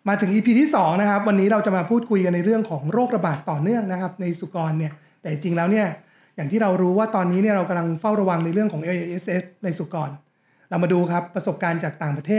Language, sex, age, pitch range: Thai, male, 30-49, 165-210 Hz